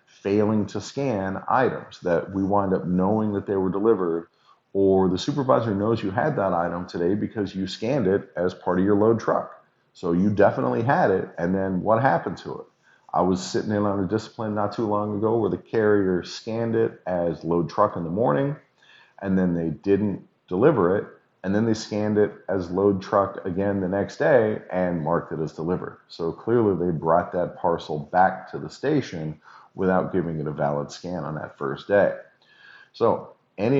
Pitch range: 90-115 Hz